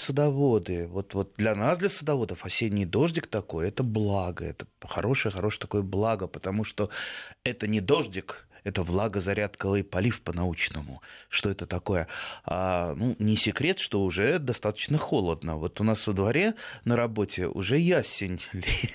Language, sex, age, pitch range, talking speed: Russian, male, 30-49, 100-140 Hz, 145 wpm